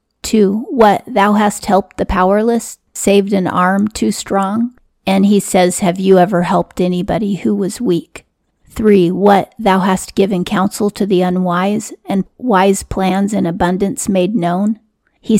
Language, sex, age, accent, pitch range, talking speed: English, female, 40-59, American, 185-210 Hz, 155 wpm